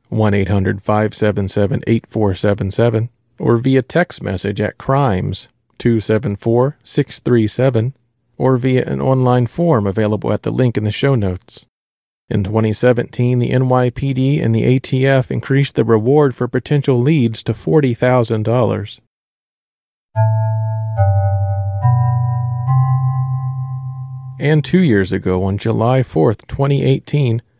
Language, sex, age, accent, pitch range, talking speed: English, male, 40-59, American, 110-130 Hz, 95 wpm